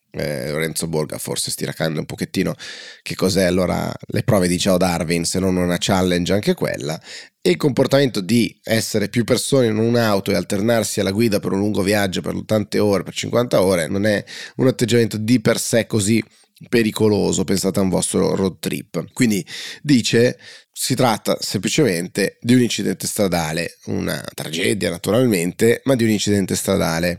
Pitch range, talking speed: 95-110 Hz, 170 wpm